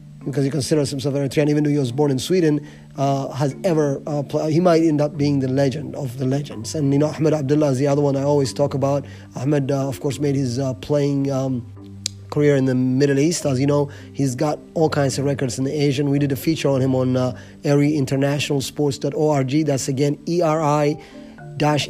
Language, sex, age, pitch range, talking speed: English, male, 30-49, 135-150 Hz, 220 wpm